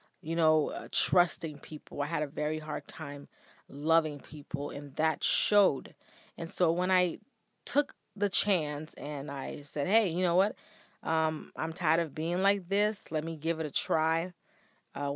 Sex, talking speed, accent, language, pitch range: female, 175 wpm, American, English, 150-180 Hz